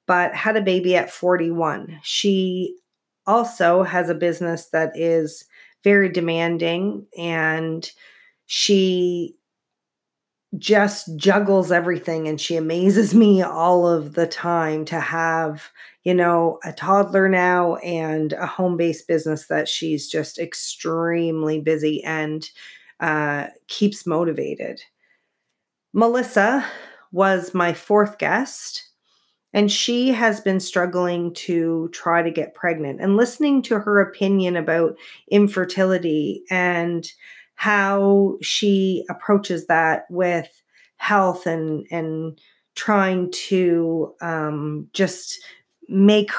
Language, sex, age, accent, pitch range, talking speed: English, female, 30-49, American, 165-195 Hz, 110 wpm